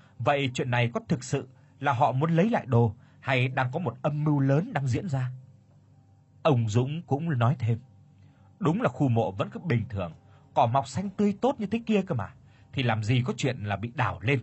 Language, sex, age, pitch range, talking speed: Vietnamese, male, 30-49, 115-150 Hz, 225 wpm